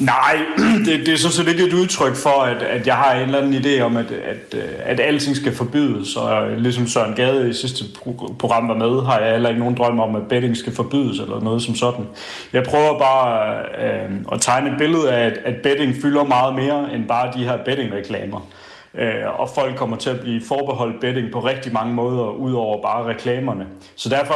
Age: 30-49